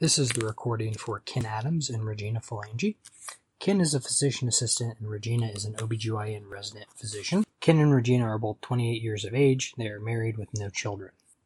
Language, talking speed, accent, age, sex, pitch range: English, 195 wpm, American, 20-39, male, 110-125 Hz